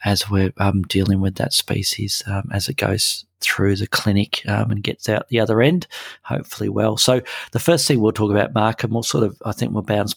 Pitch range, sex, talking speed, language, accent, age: 100-115 Hz, male, 230 wpm, English, Australian, 40-59